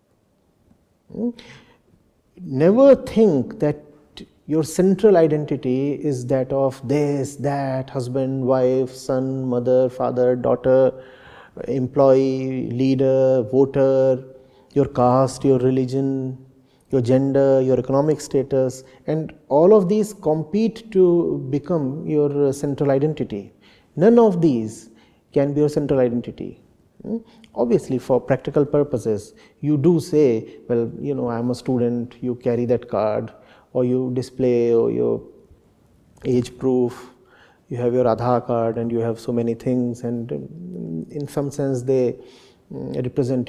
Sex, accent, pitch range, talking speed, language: male, Indian, 125-150 Hz, 120 wpm, English